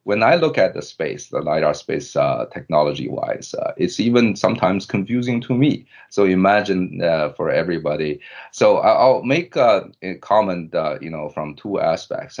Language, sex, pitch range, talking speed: English, male, 80-100 Hz, 175 wpm